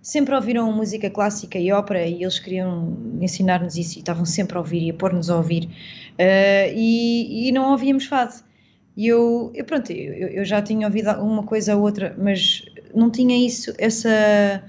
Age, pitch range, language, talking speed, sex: 20-39, 190-230 Hz, Portuguese, 185 wpm, female